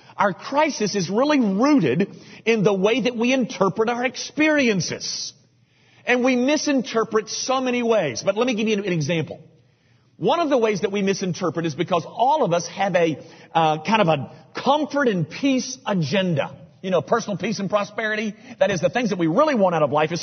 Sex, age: male, 40-59